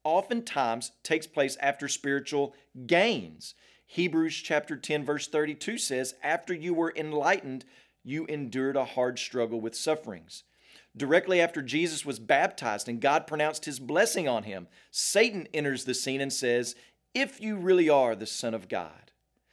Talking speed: 150 wpm